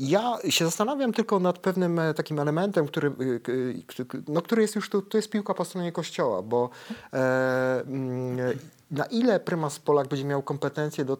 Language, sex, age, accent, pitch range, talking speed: Polish, male, 30-49, native, 125-150 Hz, 160 wpm